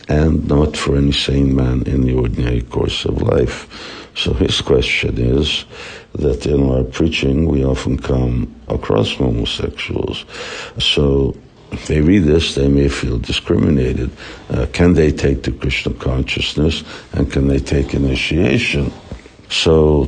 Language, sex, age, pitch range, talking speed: English, male, 60-79, 65-75 Hz, 140 wpm